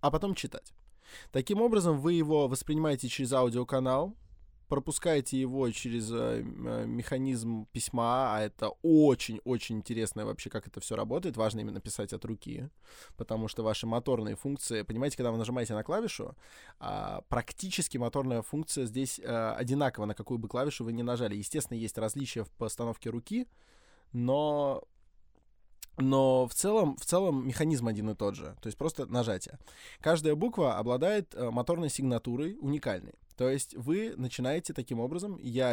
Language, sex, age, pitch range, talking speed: Russian, male, 20-39, 115-140 Hz, 145 wpm